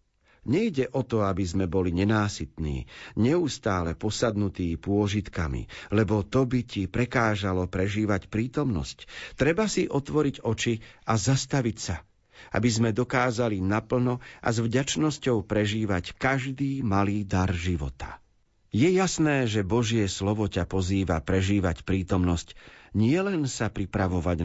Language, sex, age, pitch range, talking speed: Slovak, male, 50-69, 95-130 Hz, 120 wpm